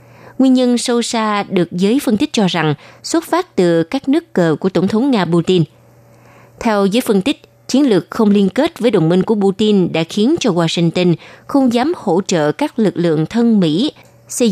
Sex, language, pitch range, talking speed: female, Vietnamese, 165-225 Hz, 205 wpm